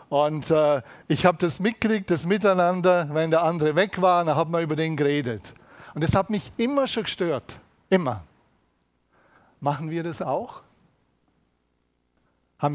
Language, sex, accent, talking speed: German, male, German, 150 wpm